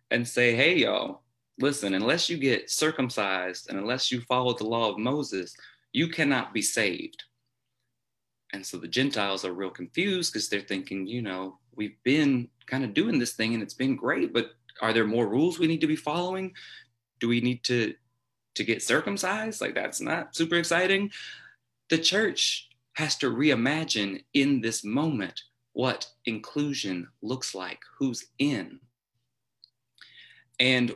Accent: American